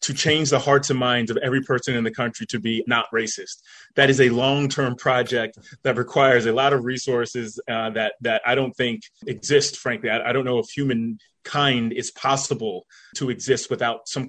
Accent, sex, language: American, male, English